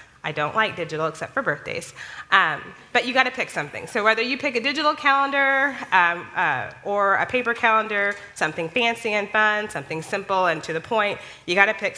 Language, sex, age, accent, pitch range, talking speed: English, female, 20-39, American, 160-210 Hz, 205 wpm